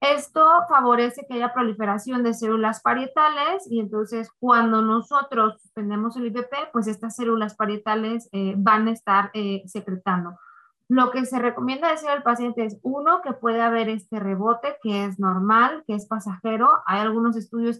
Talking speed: 160 wpm